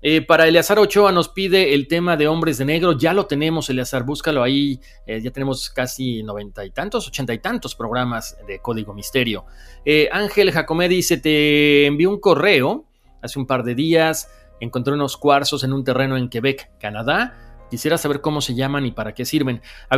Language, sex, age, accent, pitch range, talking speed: Spanish, male, 40-59, Mexican, 115-150 Hz, 190 wpm